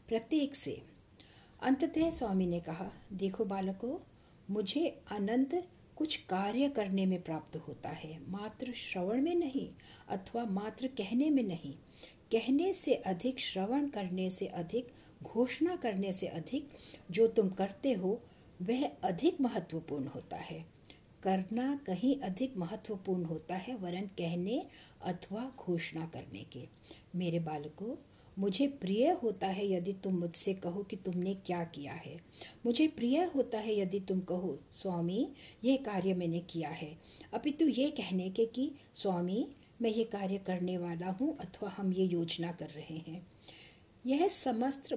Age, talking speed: 50-69, 145 wpm